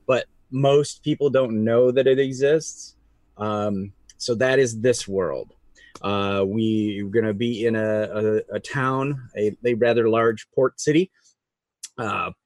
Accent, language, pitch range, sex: American, English, 105-130 Hz, male